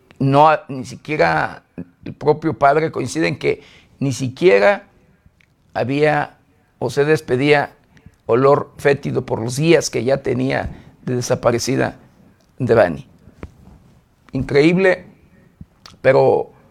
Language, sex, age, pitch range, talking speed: Spanish, male, 50-69, 130-190 Hz, 105 wpm